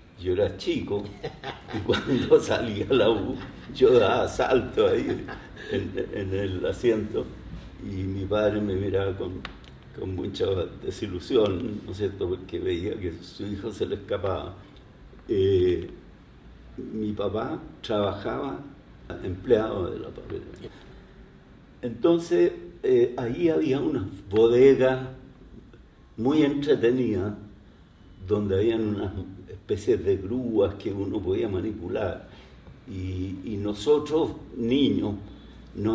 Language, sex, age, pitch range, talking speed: Spanish, male, 60-79, 100-170 Hz, 110 wpm